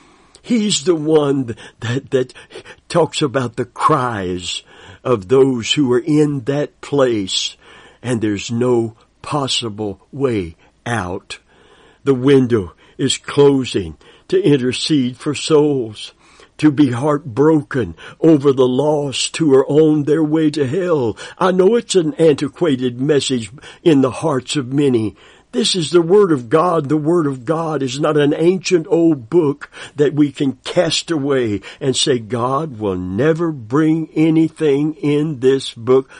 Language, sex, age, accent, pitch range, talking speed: English, male, 60-79, American, 125-160 Hz, 140 wpm